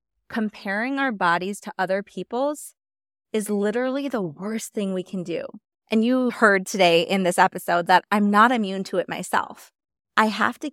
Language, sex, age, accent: English, female, 20-39, American